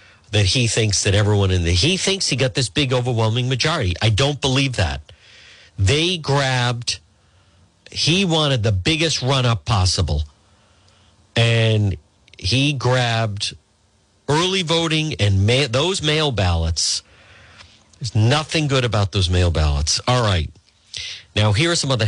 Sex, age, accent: male, 50-69, American